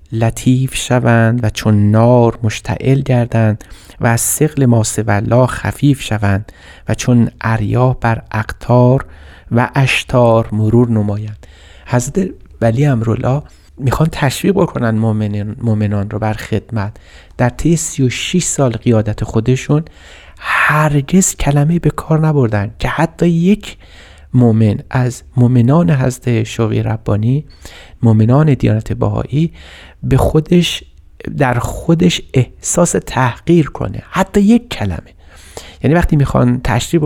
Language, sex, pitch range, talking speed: Persian, male, 110-140 Hz, 110 wpm